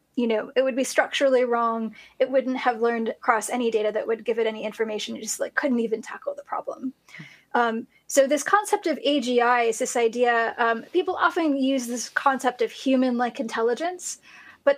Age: 10-29